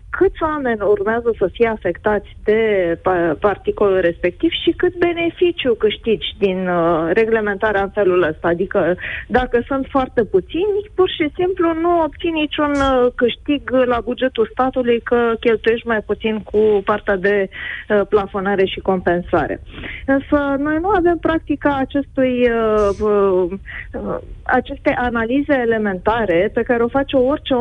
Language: Romanian